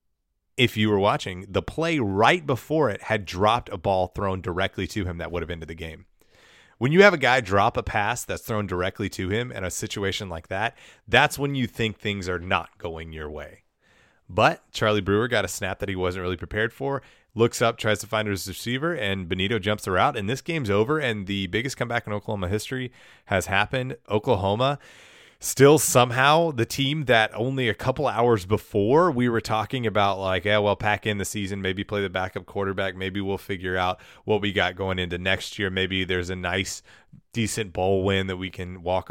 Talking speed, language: 210 wpm, English